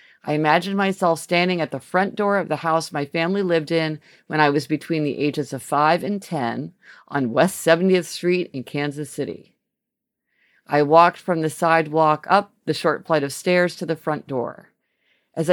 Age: 50-69